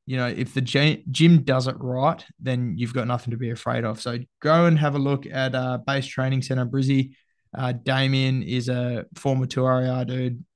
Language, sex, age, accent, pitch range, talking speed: English, male, 20-39, Australian, 120-135 Hz, 200 wpm